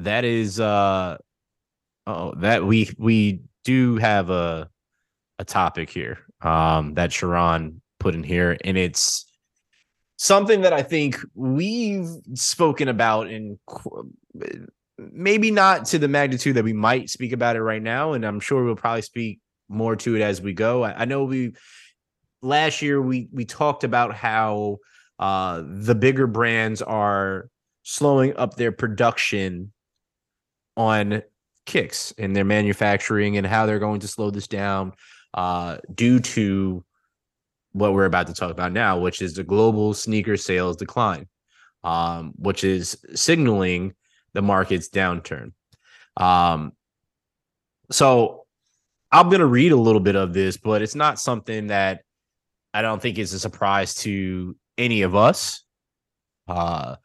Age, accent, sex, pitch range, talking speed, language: 20-39, American, male, 95-120 Hz, 145 wpm, Finnish